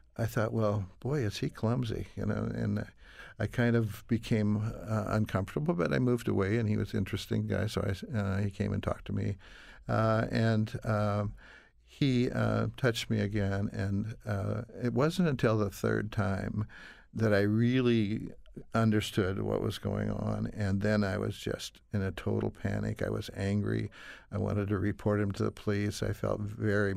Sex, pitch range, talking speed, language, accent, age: male, 100-115 Hz, 180 wpm, English, American, 60-79